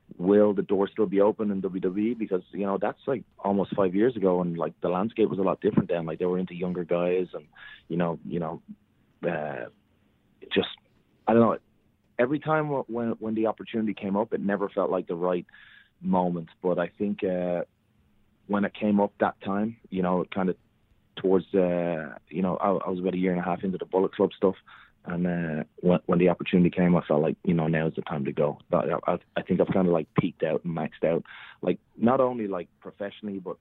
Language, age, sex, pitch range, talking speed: English, 30-49, male, 85-100 Hz, 225 wpm